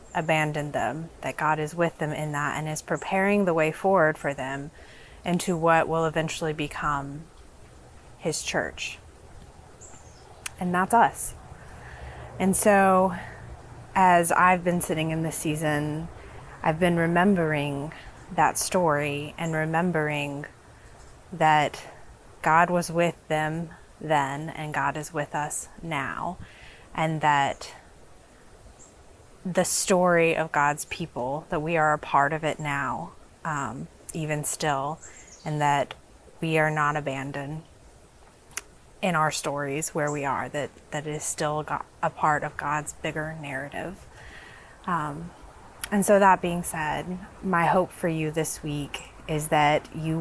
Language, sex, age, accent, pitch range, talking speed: English, female, 20-39, American, 145-165 Hz, 135 wpm